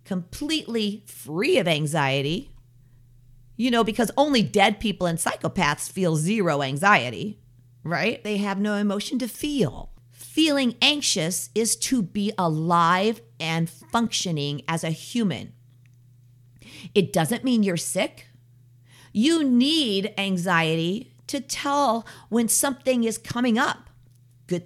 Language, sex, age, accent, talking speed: English, female, 50-69, American, 120 wpm